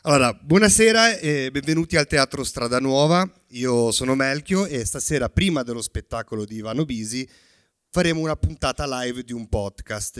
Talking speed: 155 wpm